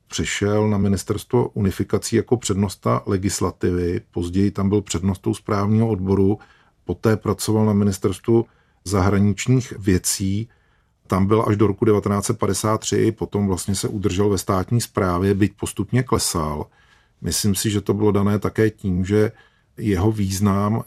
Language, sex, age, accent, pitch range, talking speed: Czech, male, 40-59, native, 95-110 Hz, 130 wpm